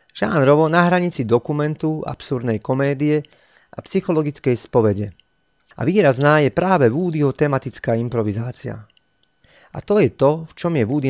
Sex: male